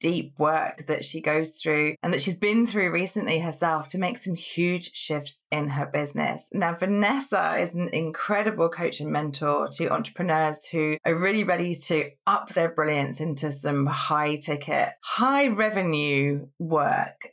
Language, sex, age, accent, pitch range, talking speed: English, female, 20-39, British, 150-195 Hz, 160 wpm